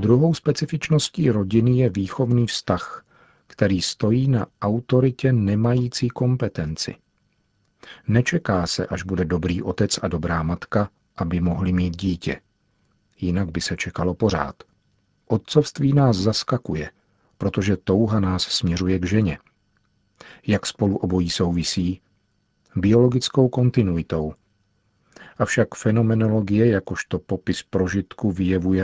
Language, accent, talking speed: Czech, native, 105 wpm